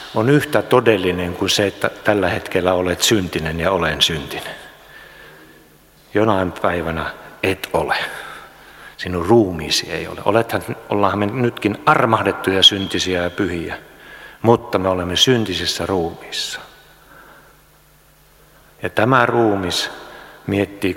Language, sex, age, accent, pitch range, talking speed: Finnish, male, 60-79, native, 95-115 Hz, 105 wpm